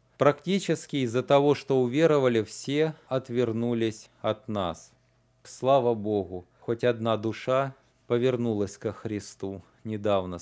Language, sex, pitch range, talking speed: Russian, male, 115-160 Hz, 110 wpm